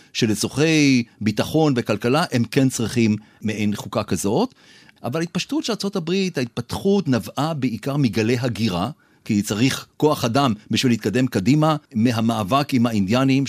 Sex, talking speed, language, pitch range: male, 125 wpm, Hebrew, 110-145 Hz